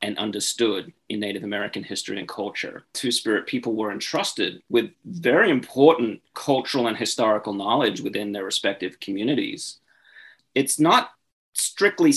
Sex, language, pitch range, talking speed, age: male, English, 110-160 Hz, 130 wpm, 30-49